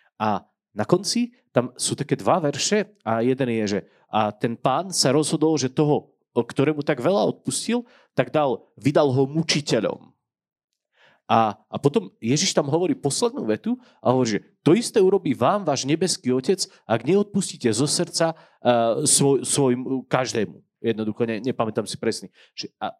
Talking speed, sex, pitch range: 155 wpm, male, 120-165 Hz